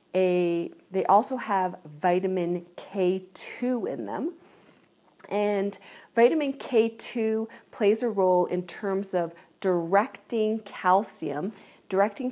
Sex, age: female, 40-59